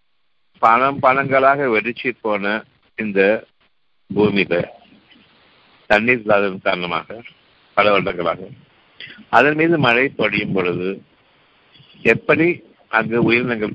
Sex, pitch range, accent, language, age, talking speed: male, 105-130 Hz, native, Tamil, 60-79, 65 wpm